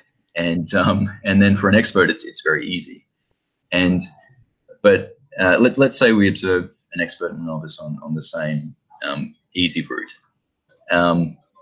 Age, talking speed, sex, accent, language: 20-39, 165 wpm, male, Australian, English